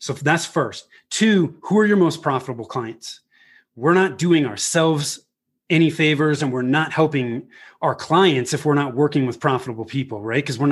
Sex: male